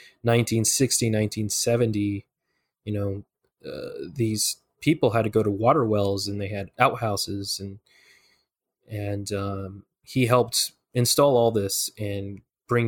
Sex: male